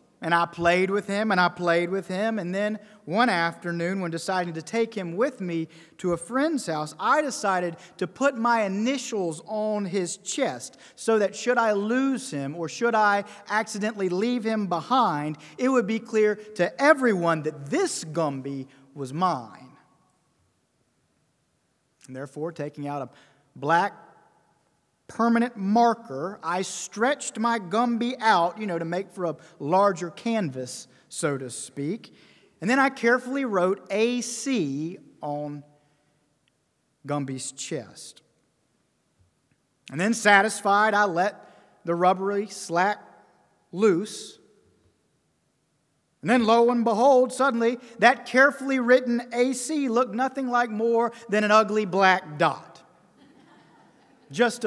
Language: English